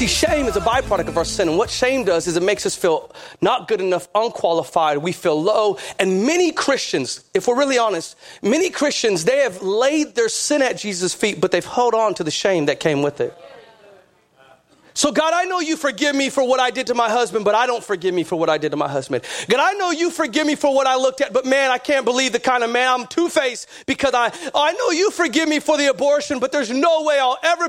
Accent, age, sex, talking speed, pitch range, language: American, 40-59, male, 250 wpm, 235-320 Hz, English